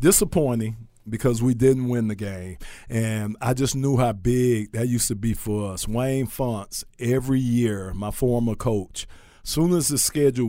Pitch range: 105-130 Hz